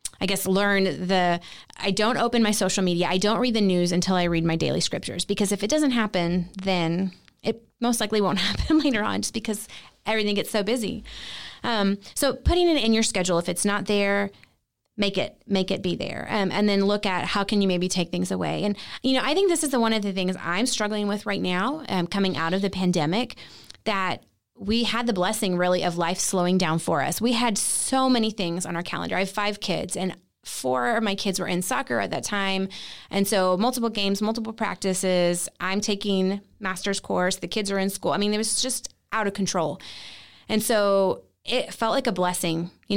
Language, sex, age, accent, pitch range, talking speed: English, female, 30-49, American, 185-220 Hz, 220 wpm